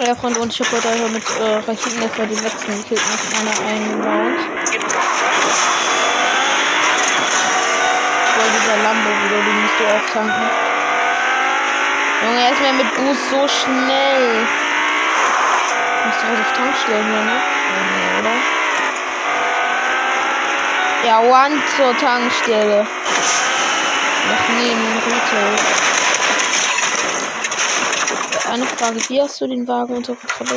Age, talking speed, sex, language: 20-39, 120 wpm, female, German